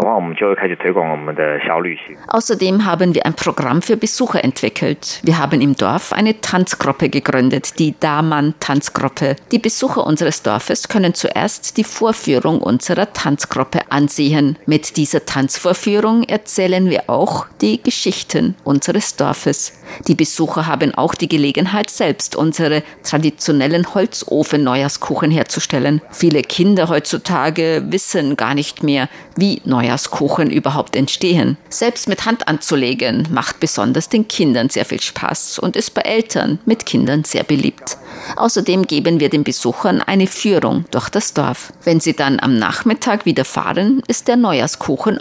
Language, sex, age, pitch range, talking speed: German, female, 50-69, 150-210 Hz, 130 wpm